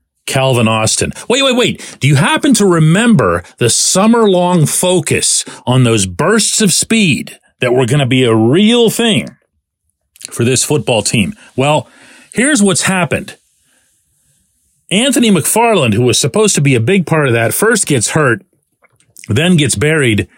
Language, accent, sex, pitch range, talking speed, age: English, American, male, 115-180 Hz, 155 wpm, 40-59